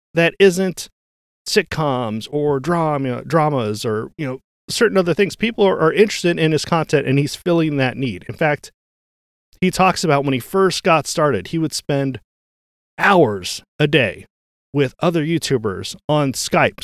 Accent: American